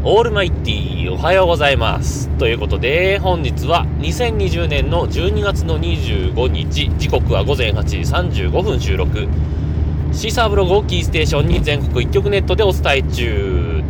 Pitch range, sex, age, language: 75-80 Hz, male, 30-49, Japanese